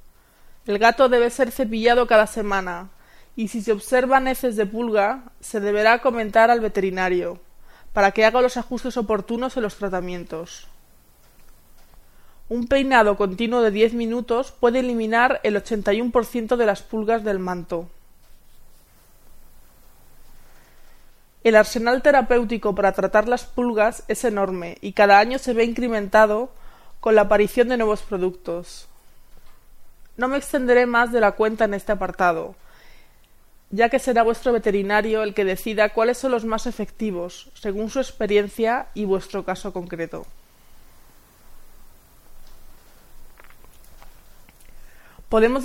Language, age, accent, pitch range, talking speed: Spanish, 20-39, Spanish, 205-245 Hz, 125 wpm